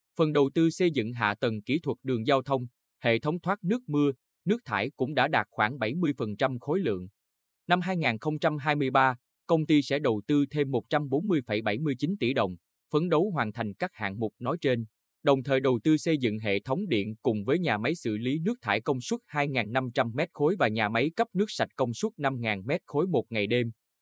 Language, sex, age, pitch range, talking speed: Vietnamese, male, 20-39, 115-155 Hz, 195 wpm